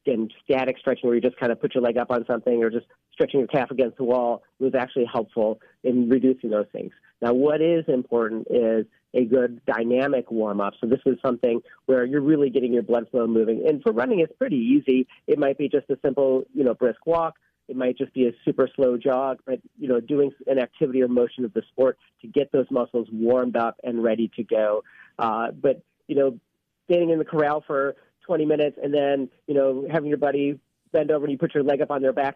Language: English